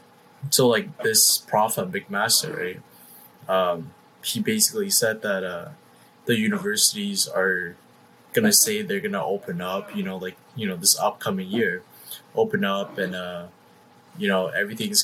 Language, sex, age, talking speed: English, male, 20-39, 155 wpm